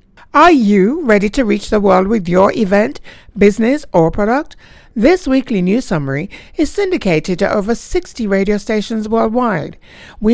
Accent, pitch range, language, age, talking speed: American, 175-255 Hz, English, 60-79, 150 wpm